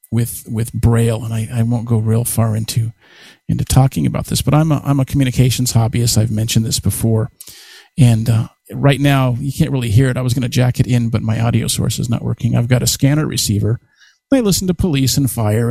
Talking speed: 230 wpm